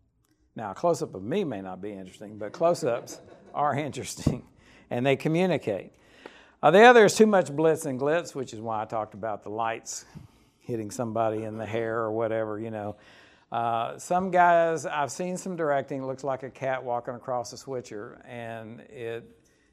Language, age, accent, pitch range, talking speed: English, 60-79, American, 115-150 Hz, 185 wpm